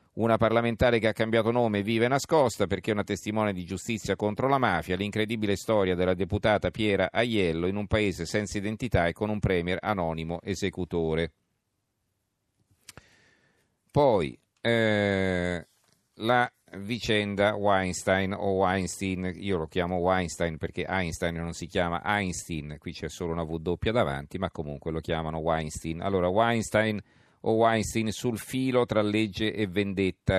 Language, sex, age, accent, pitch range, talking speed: Italian, male, 40-59, native, 90-110 Hz, 140 wpm